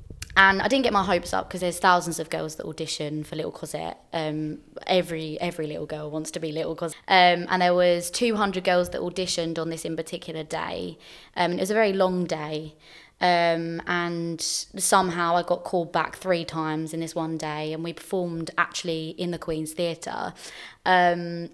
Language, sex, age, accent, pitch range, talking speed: English, female, 20-39, British, 160-190 Hz, 190 wpm